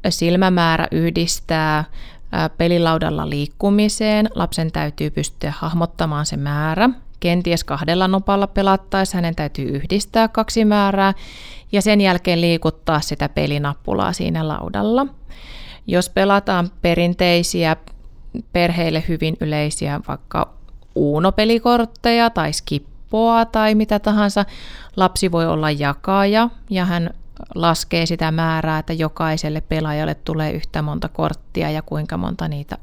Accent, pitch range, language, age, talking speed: native, 155-200 Hz, Finnish, 30-49, 110 wpm